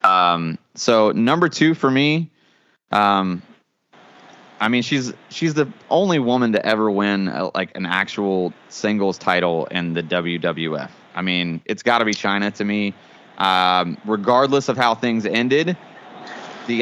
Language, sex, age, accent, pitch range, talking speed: English, male, 20-39, American, 105-130 Hz, 145 wpm